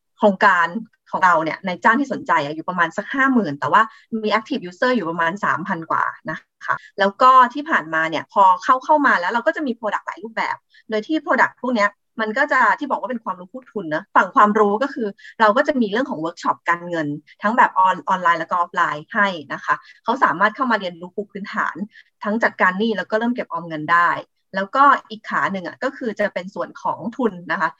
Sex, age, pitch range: female, 30-49, 180-250 Hz